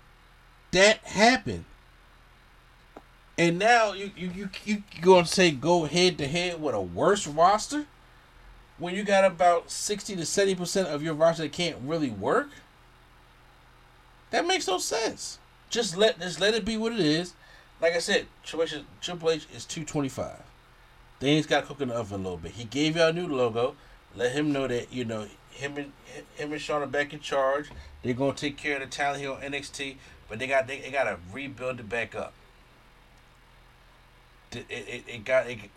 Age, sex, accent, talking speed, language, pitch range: 30-49, male, American, 180 wpm, English, 130-180 Hz